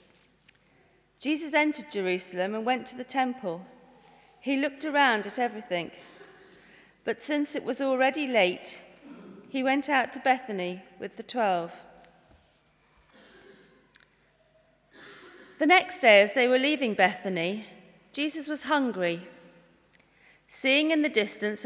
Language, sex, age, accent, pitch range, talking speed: English, female, 40-59, British, 195-275 Hz, 115 wpm